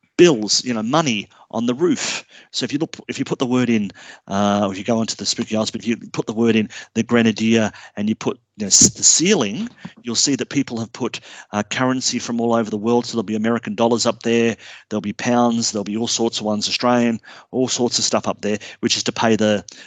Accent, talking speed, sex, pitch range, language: Australian, 250 wpm, male, 100-115 Hz, English